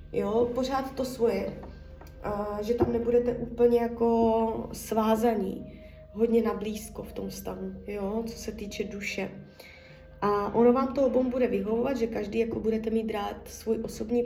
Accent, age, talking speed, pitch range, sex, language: native, 20-39, 150 wpm, 210-235 Hz, female, Czech